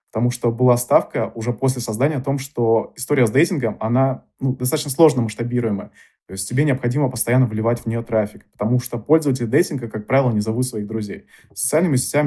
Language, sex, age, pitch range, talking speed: Russian, male, 20-39, 110-135 Hz, 190 wpm